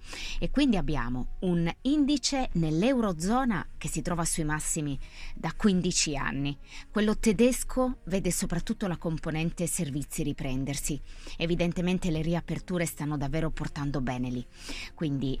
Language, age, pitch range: Italian, 20-39, 145-180 Hz